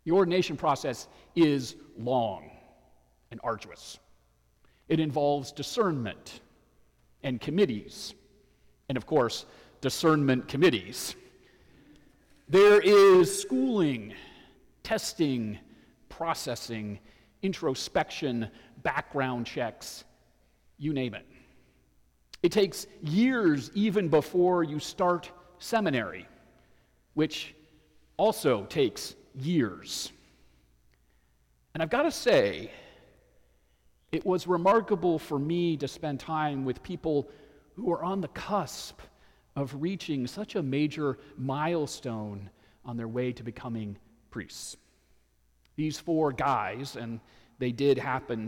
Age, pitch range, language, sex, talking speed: 40-59, 115-165 Hz, English, male, 100 wpm